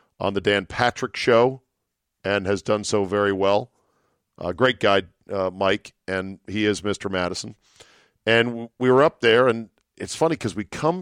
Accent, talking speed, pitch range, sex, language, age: American, 175 wpm, 90-115 Hz, male, English, 40-59